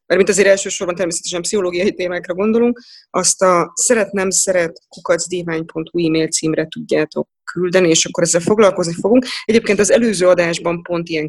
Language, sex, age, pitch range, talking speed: Hungarian, female, 20-39, 170-205 Hz, 145 wpm